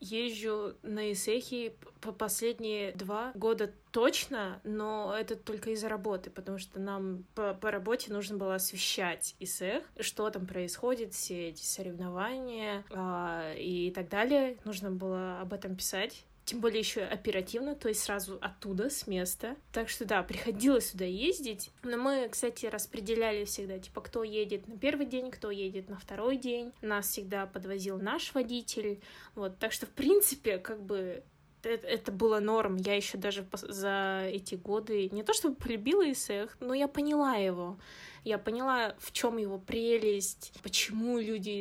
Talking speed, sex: 160 wpm, female